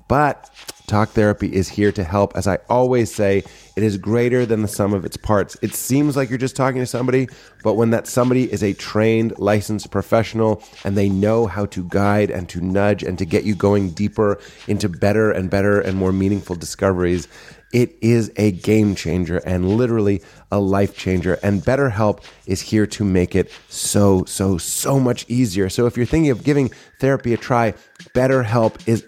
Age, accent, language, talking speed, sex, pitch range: 30-49, American, English, 190 wpm, male, 100-125 Hz